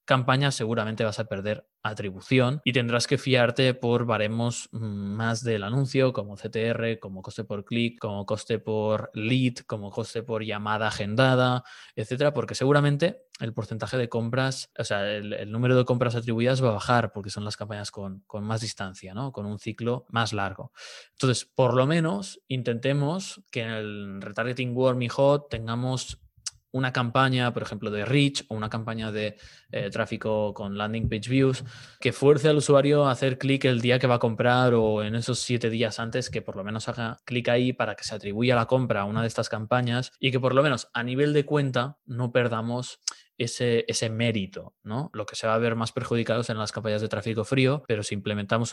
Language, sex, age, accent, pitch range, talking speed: Spanish, male, 20-39, Spanish, 110-130 Hz, 195 wpm